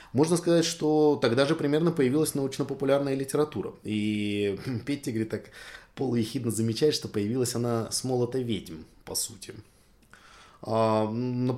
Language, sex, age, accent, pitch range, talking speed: Russian, male, 20-39, native, 110-155 Hz, 125 wpm